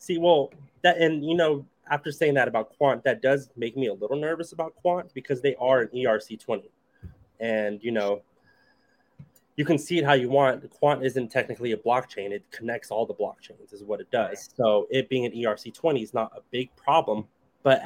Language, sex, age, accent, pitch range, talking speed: English, male, 20-39, American, 110-140 Hz, 200 wpm